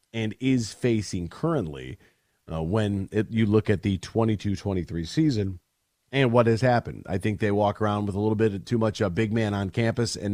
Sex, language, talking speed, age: male, English, 210 wpm, 40-59